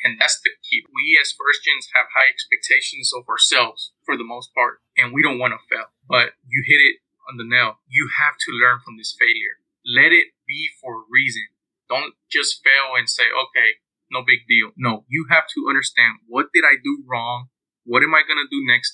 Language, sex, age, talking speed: English, male, 20-39, 220 wpm